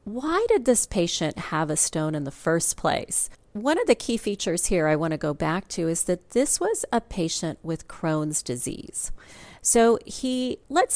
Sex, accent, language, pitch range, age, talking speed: female, American, English, 160-235 Hz, 40-59, 190 wpm